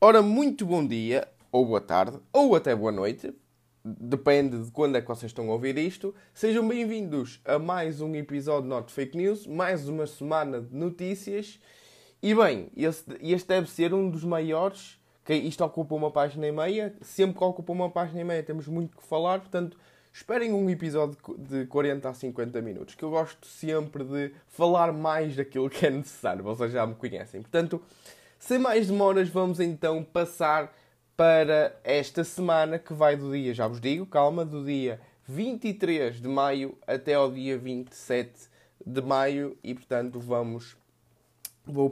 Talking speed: 170 wpm